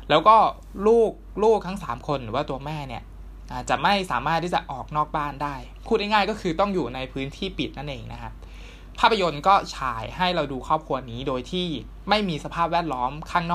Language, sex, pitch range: Thai, male, 125-175 Hz